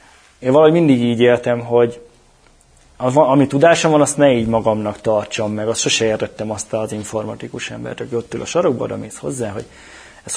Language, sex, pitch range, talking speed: Hungarian, male, 110-135 Hz, 185 wpm